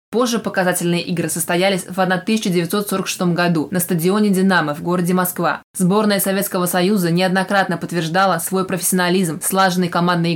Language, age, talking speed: Russian, 20-39, 125 wpm